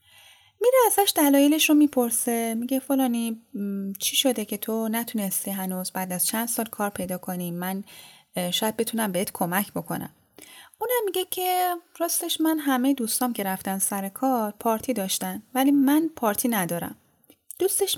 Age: 10-29